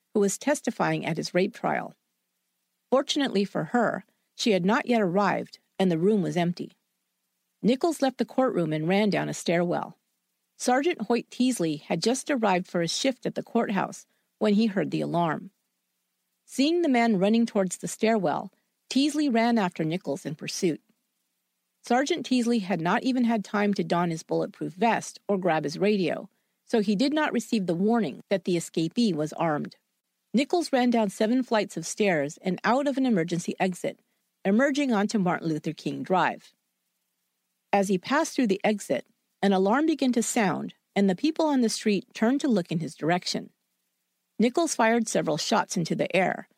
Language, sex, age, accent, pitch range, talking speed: English, female, 50-69, American, 185-245 Hz, 175 wpm